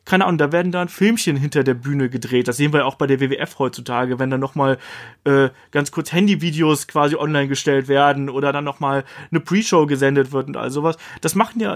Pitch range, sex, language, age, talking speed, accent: 145-175 Hz, male, German, 30-49, 220 wpm, German